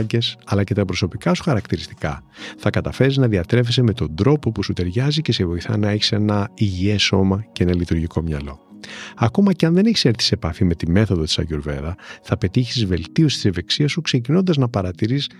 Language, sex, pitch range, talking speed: Greek, male, 95-145 Hz, 195 wpm